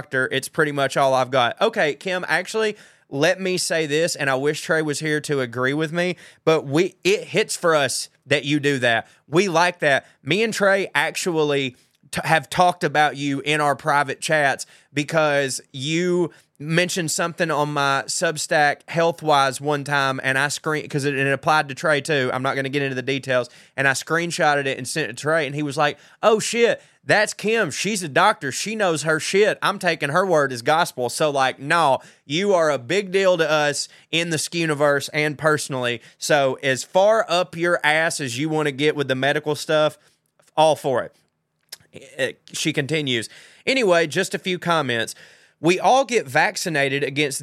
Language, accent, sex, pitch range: English, American, male, 135-170 Hz